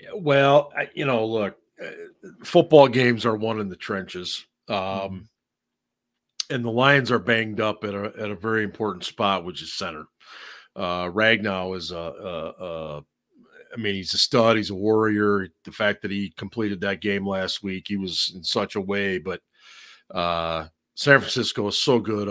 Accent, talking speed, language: American, 165 wpm, English